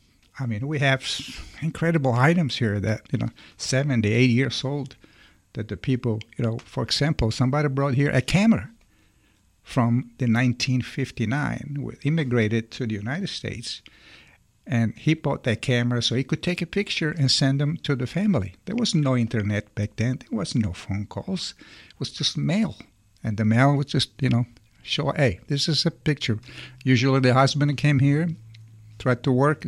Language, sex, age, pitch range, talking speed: English, male, 60-79, 115-140 Hz, 180 wpm